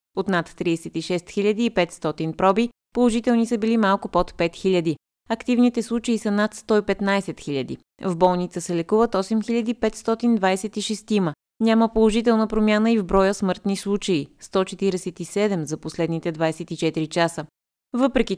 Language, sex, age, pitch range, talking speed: Bulgarian, female, 20-39, 170-220 Hz, 125 wpm